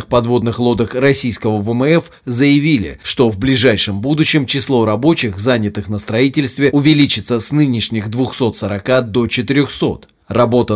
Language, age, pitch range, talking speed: Russian, 30-49, 110-140 Hz, 115 wpm